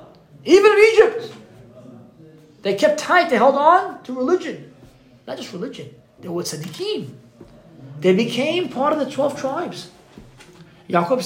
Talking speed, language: 135 wpm, English